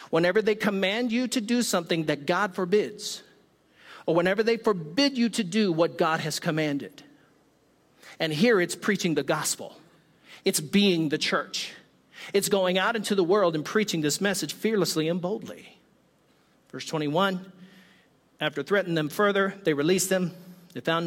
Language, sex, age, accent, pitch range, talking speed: English, male, 50-69, American, 160-195 Hz, 155 wpm